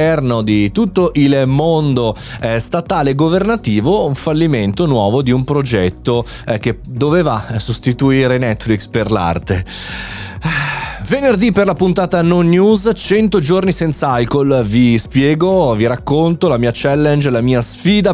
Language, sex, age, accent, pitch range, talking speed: Italian, male, 30-49, native, 115-175 Hz, 130 wpm